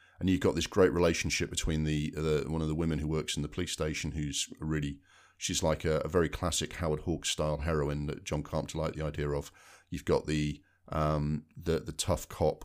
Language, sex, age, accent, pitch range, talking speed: English, male, 40-59, British, 75-90 Hz, 220 wpm